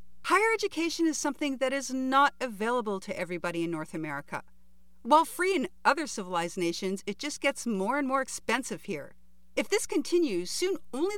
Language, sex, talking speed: English, female, 170 wpm